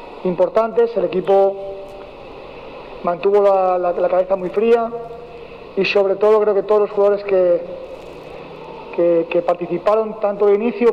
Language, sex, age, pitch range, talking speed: Spanish, male, 40-59, 190-230 Hz, 135 wpm